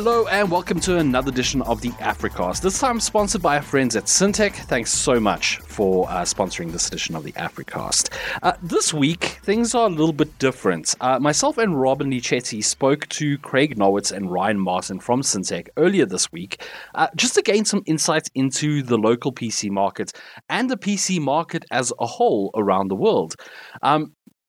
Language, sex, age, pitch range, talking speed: English, male, 30-49, 105-160 Hz, 185 wpm